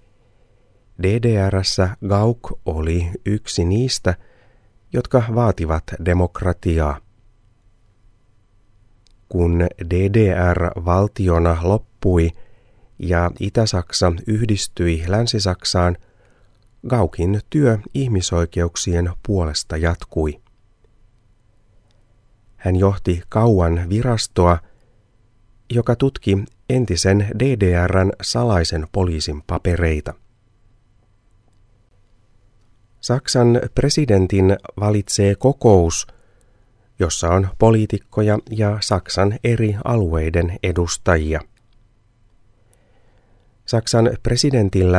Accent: native